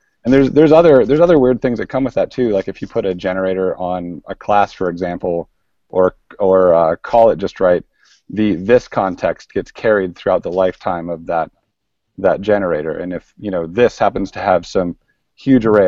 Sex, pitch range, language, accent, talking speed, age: male, 95-115 Hz, English, American, 205 wpm, 30-49